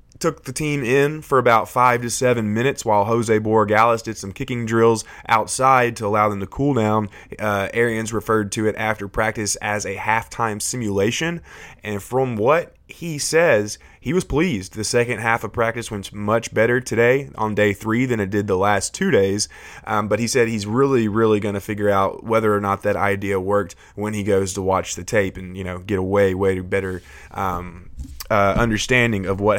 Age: 20-39